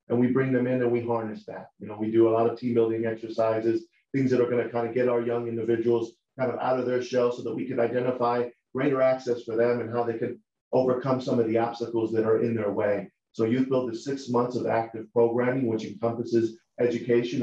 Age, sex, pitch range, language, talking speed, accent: 40-59, male, 115-130 Hz, English, 240 wpm, American